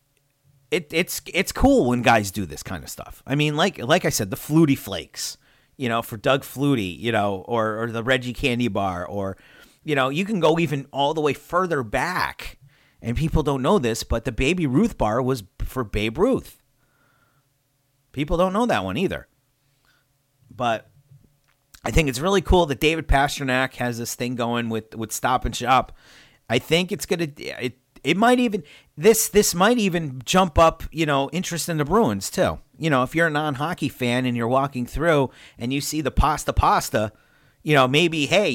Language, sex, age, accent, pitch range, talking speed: English, male, 40-59, American, 120-150 Hz, 195 wpm